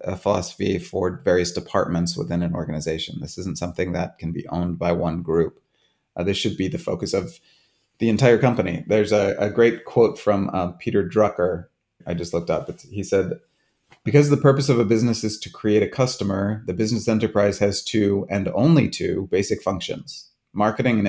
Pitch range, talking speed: 95-125 Hz, 190 wpm